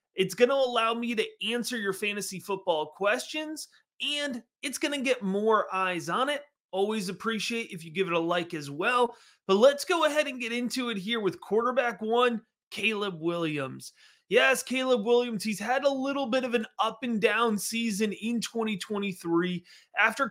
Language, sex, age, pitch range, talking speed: English, male, 30-49, 180-235 Hz, 180 wpm